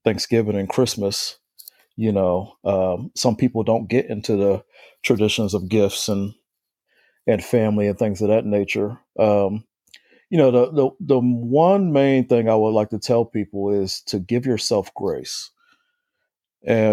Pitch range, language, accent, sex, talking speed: 100-125 Hz, English, American, male, 155 wpm